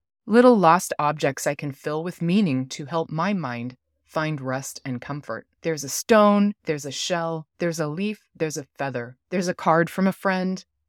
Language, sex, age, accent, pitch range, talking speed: English, female, 30-49, American, 135-195 Hz, 185 wpm